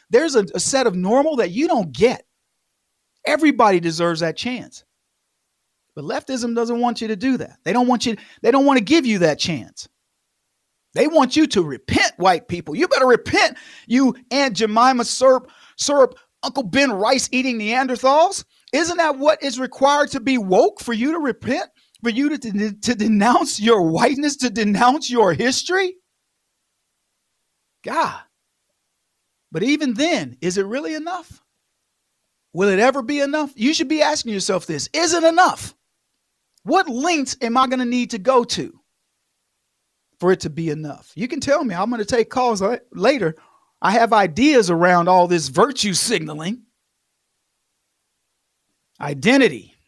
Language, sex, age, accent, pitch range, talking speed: English, male, 40-59, American, 195-280 Hz, 160 wpm